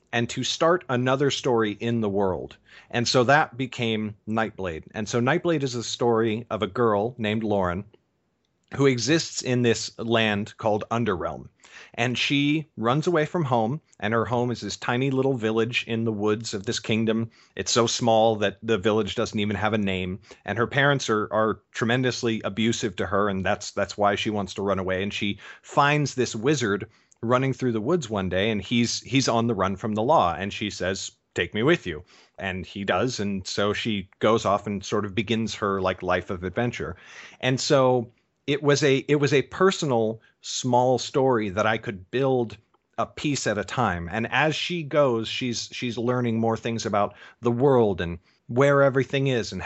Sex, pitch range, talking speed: male, 105-125 Hz, 195 wpm